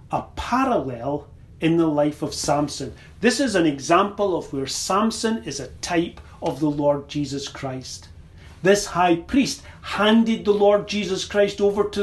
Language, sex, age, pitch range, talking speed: English, male, 40-59, 145-210 Hz, 160 wpm